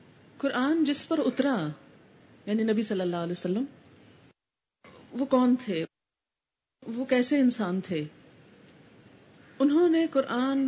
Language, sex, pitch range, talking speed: Urdu, female, 210-285 Hz, 110 wpm